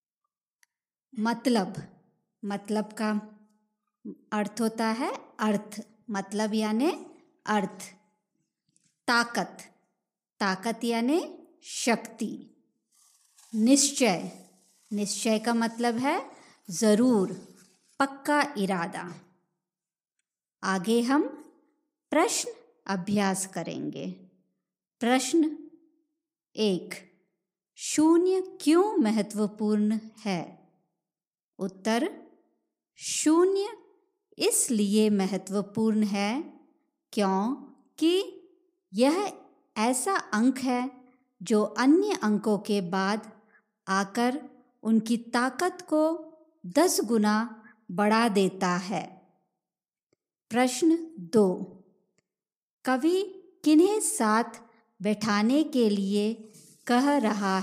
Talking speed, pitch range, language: 70 wpm, 200-295 Hz, Hindi